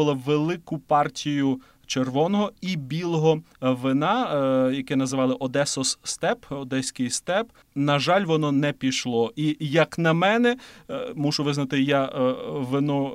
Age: 30-49